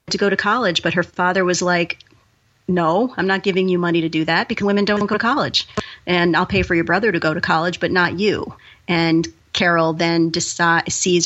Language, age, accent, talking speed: English, 40-59, American, 220 wpm